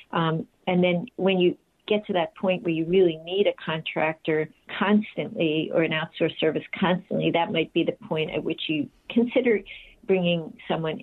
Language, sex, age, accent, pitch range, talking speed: English, female, 50-69, American, 160-190 Hz, 175 wpm